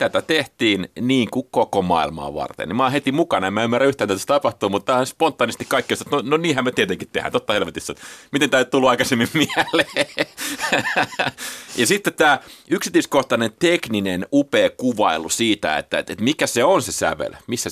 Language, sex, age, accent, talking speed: Finnish, male, 30-49, native, 180 wpm